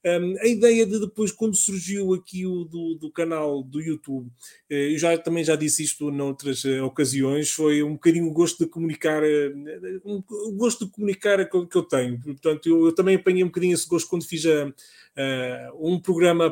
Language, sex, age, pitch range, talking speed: Portuguese, male, 30-49, 150-190 Hz, 180 wpm